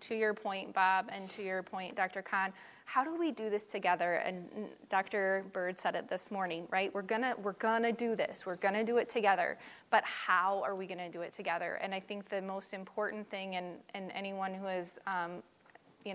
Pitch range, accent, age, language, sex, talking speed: 180-200 Hz, American, 20-39, English, female, 210 wpm